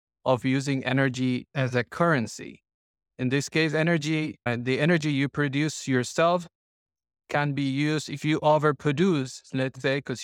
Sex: male